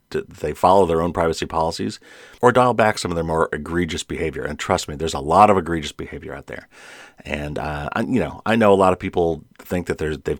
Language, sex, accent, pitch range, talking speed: English, male, American, 80-105 Hz, 240 wpm